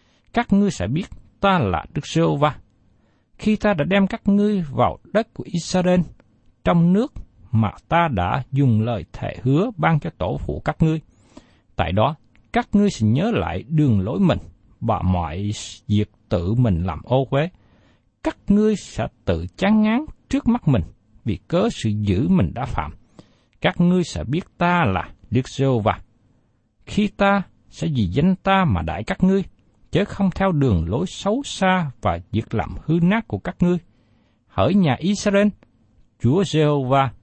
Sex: male